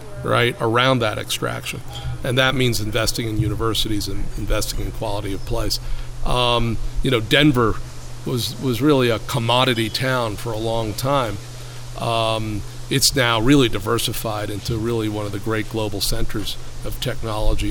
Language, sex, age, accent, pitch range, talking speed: English, male, 40-59, American, 110-130 Hz, 155 wpm